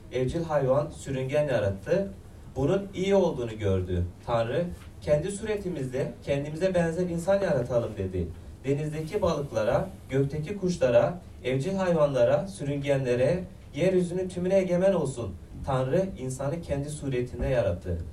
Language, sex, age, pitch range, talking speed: Turkish, male, 30-49, 110-170 Hz, 105 wpm